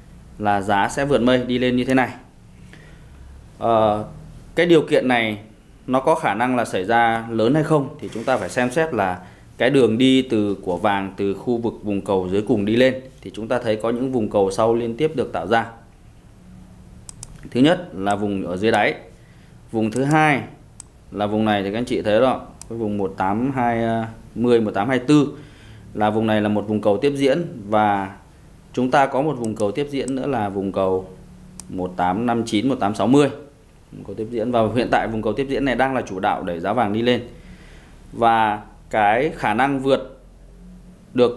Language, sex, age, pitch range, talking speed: Vietnamese, male, 20-39, 100-125 Hz, 195 wpm